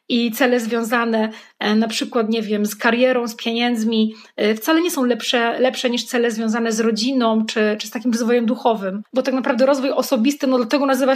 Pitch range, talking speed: 230-275 Hz, 190 wpm